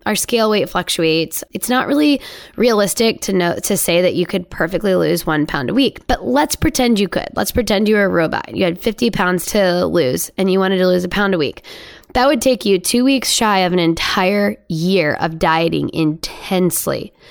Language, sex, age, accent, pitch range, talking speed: English, female, 10-29, American, 170-225 Hz, 210 wpm